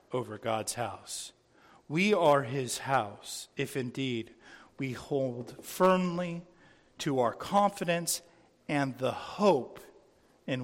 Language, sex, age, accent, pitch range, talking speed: English, male, 50-69, American, 130-155 Hz, 105 wpm